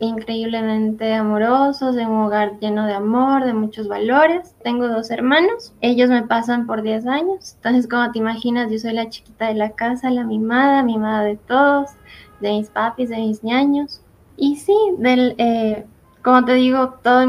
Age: 10-29